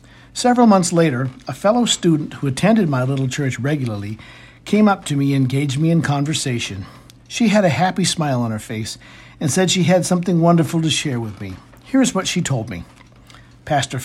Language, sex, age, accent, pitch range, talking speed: English, male, 50-69, American, 125-180 Hz, 190 wpm